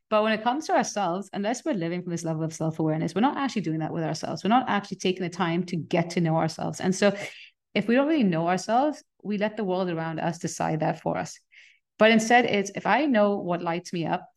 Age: 30-49